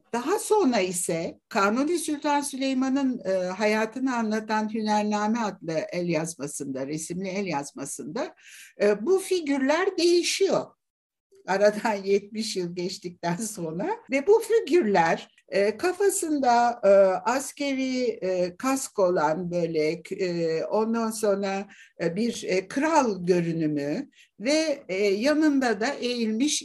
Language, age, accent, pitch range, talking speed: Turkish, 60-79, native, 185-285 Hz, 110 wpm